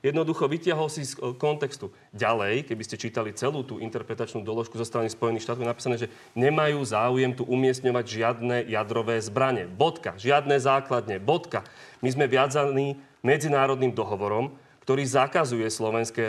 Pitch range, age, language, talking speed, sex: 120-155 Hz, 30-49, Slovak, 145 wpm, male